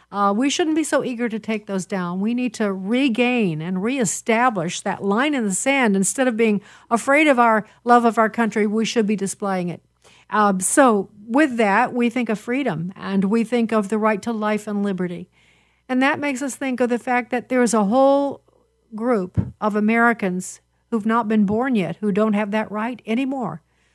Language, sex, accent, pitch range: English, female, American, 195-240 Hz